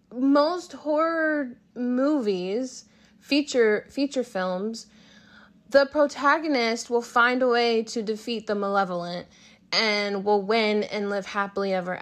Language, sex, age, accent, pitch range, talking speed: English, female, 10-29, American, 200-245 Hz, 115 wpm